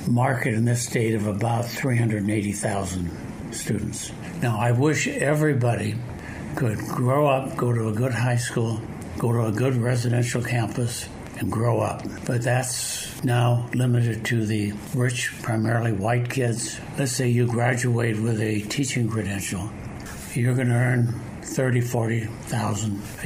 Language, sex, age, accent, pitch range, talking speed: English, male, 60-79, American, 110-125 Hz, 135 wpm